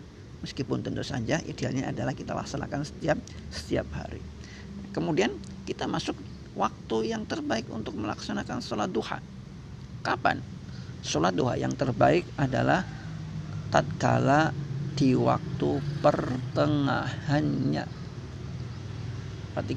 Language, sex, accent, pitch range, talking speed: Indonesian, male, native, 115-140 Hz, 95 wpm